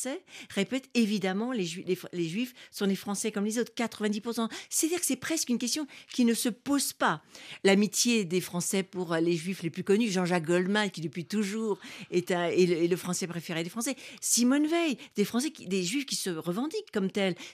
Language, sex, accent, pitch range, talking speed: French, female, French, 180-245 Hz, 210 wpm